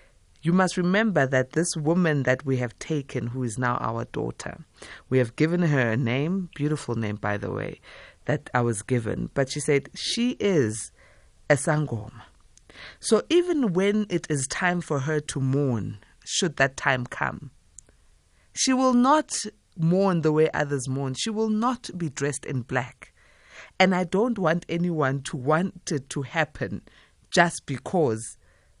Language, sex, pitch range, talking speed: English, female, 130-180 Hz, 160 wpm